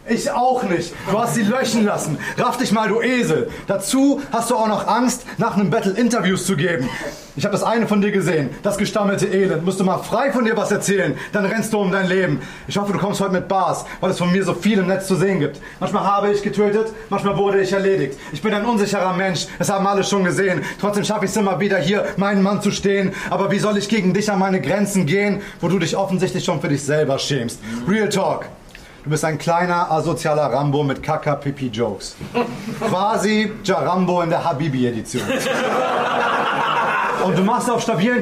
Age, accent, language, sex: 30-49, German, English, male